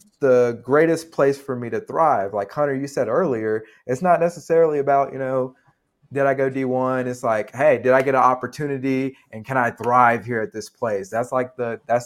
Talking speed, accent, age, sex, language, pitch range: 210 wpm, American, 30-49, male, English, 105-130 Hz